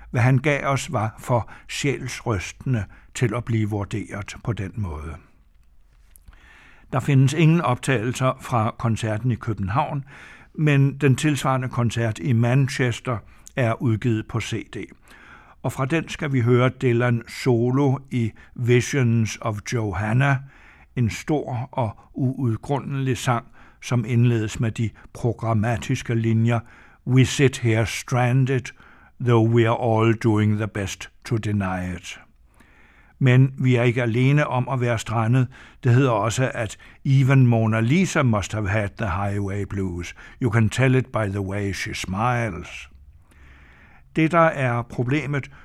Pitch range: 110-130 Hz